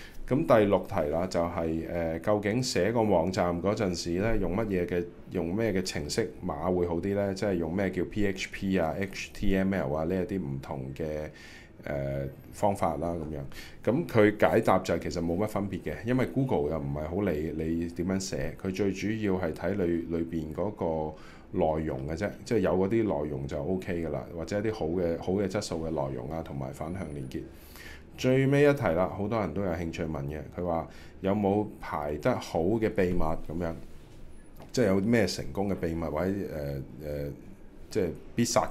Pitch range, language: 80-100 Hz, Chinese